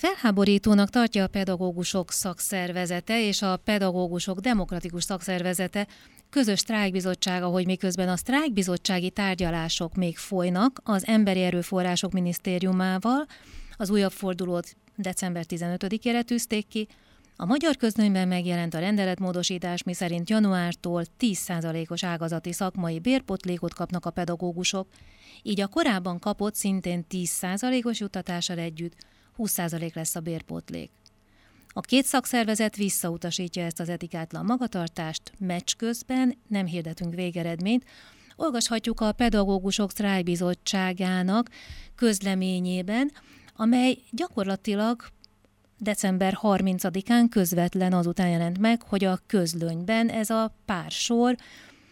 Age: 30-49